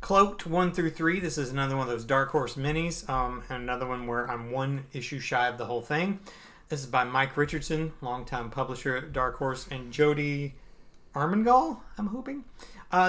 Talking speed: 195 wpm